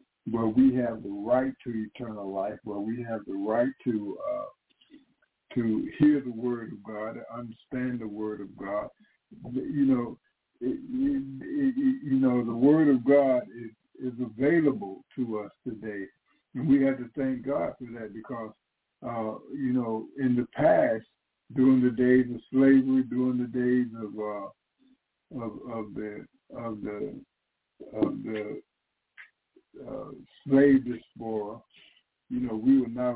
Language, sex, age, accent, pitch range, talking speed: English, male, 60-79, American, 110-135 Hz, 150 wpm